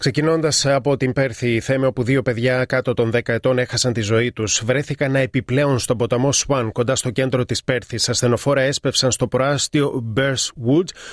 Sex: male